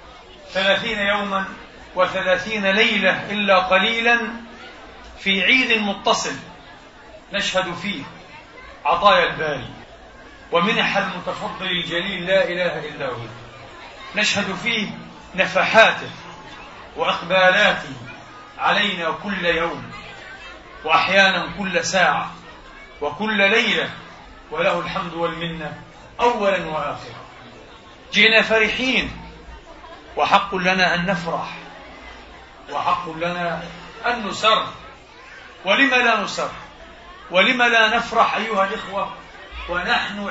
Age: 40-59